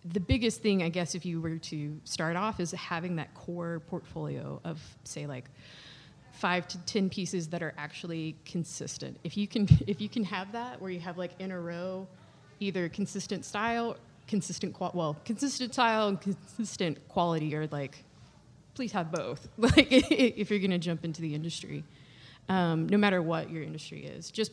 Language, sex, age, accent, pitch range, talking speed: English, female, 20-39, American, 150-185 Hz, 185 wpm